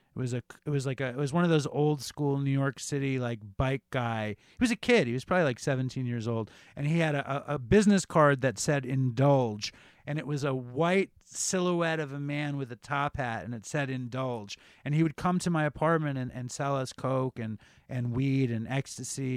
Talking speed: 230 wpm